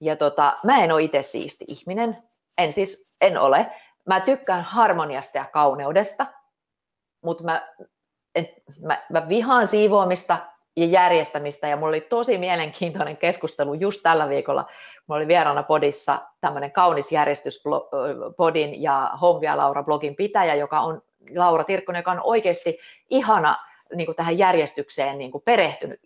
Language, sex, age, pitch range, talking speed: Finnish, female, 30-49, 160-245 Hz, 140 wpm